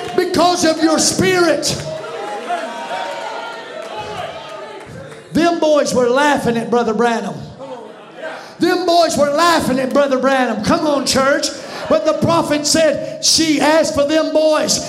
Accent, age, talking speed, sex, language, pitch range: American, 40-59, 120 wpm, male, English, 285-330 Hz